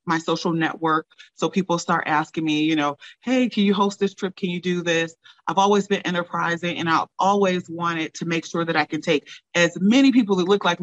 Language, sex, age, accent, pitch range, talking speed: English, female, 30-49, American, 160-185 Hz, 225 wpm